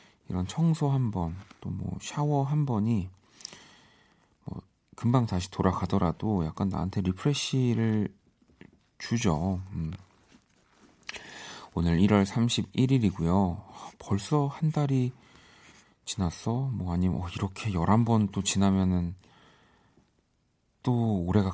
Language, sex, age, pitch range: Korean, male, 40-59, 95-125 Hz